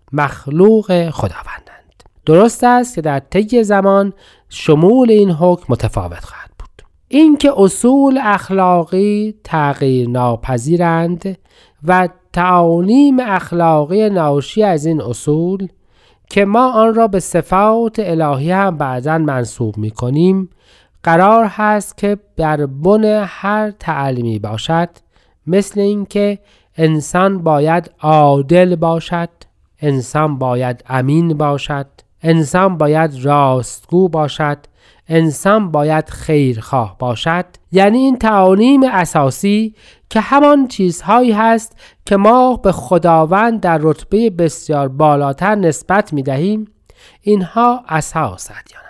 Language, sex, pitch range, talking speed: Persian, male, 155-210 Hz, 105 wpm